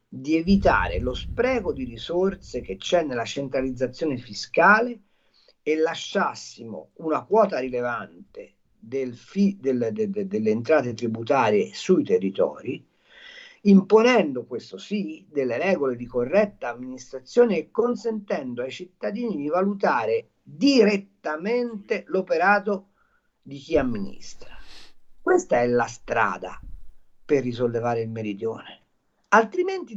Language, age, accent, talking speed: Italian, 50-69, native, 100 wpm